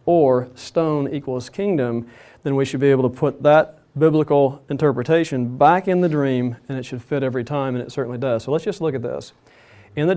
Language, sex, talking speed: English, male, 210 wpm